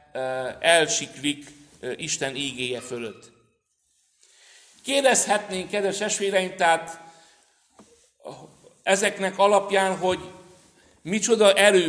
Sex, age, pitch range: male, 60-79, 145-200 Hz